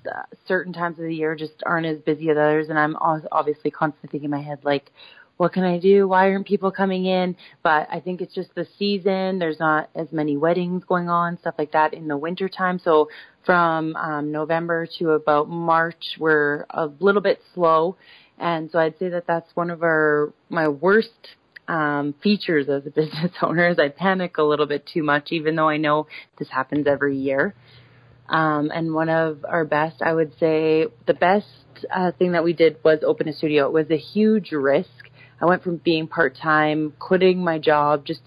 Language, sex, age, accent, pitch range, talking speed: English, female, 30-49, American, 150-175 Hz, 205 wpm